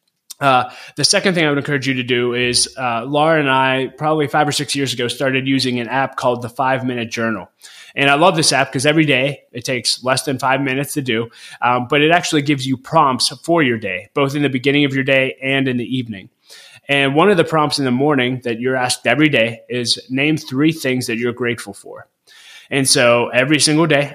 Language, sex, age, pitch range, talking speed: English, male, 20-39, 120-145 Hz, 230 wpm